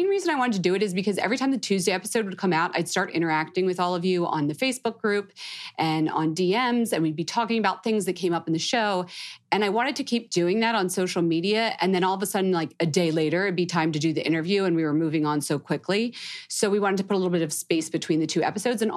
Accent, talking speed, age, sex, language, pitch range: American, 290 wpm, 30-49, female, English, 160-215 Hz